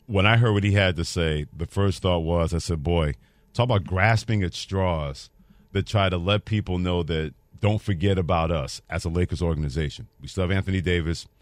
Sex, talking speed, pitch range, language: male, 210 wpm, 90-115 Hz, English